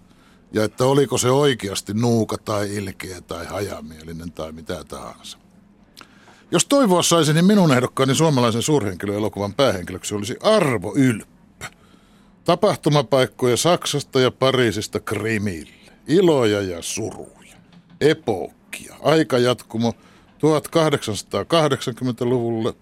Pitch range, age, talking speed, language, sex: 105-155 Hz, 60-79, 95 wpm, Finnish, male